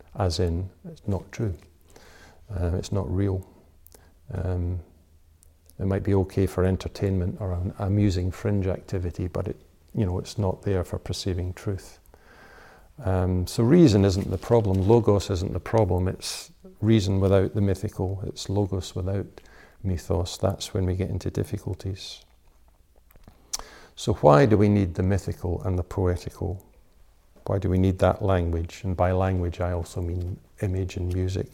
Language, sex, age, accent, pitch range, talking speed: English, male, 50-69, British, 90-100 Hz, 155 wpm